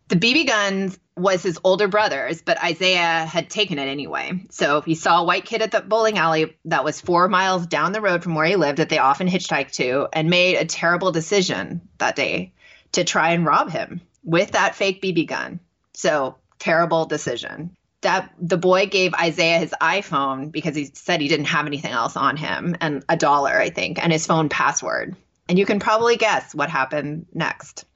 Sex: female